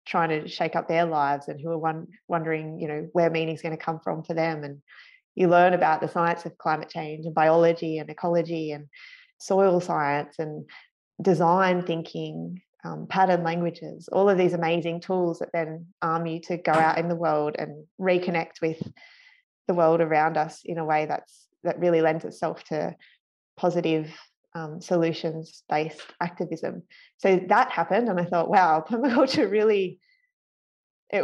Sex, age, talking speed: female, 20-39, 170 wpm